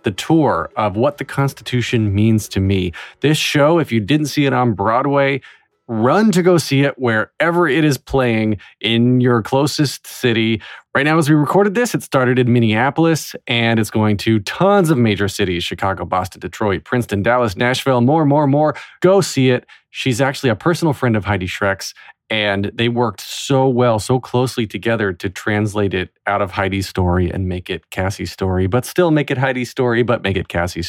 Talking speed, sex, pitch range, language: 190 wpm, male, 110-150 Hz, English